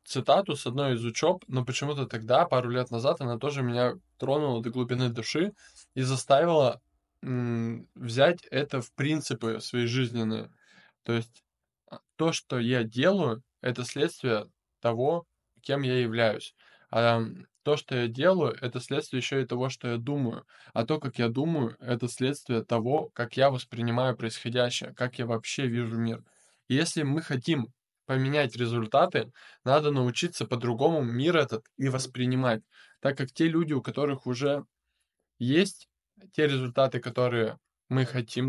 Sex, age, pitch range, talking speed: male, 10-29, 115-140 Hz, 150 wpm